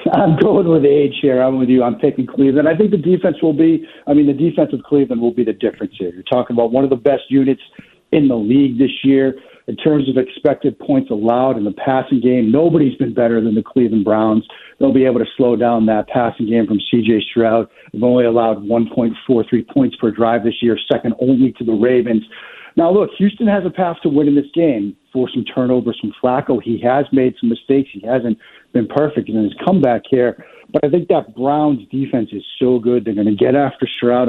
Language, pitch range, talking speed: English, 120-145 Hz, 220 wpm